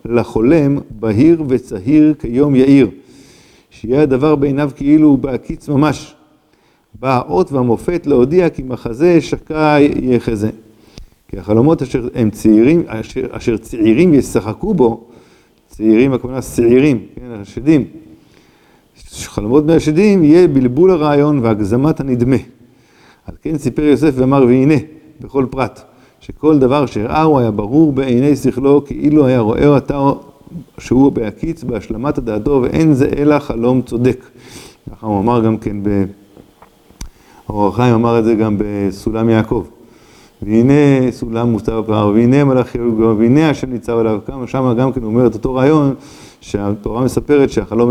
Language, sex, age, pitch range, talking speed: Hebrew, male, 50-69, 115-145 Hz, 130 wpm